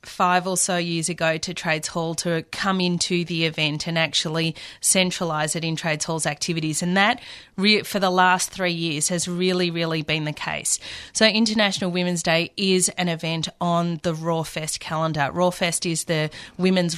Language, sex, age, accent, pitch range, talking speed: English, female, 30-49, Australian, 165-195 Hz, 180 wpm